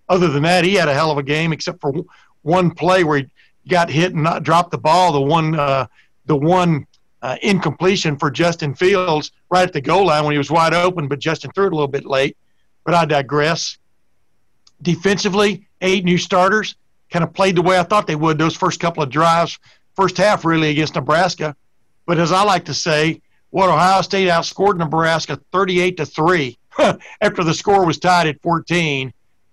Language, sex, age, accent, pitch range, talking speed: English, male, 60-79, American, 150-180 Hz, 200 wpm